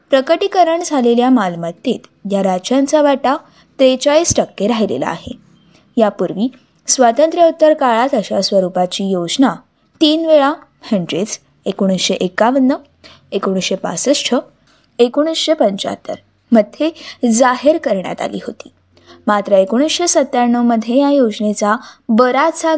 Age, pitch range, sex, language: 20-39, 215-290 Hz, female, Marathi